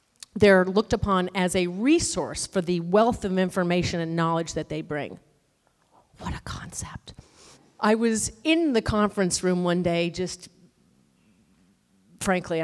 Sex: female